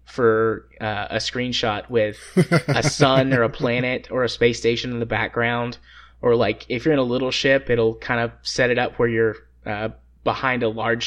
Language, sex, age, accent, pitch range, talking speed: English, male, 20-39, American, 110-130 Hz, 200 wpm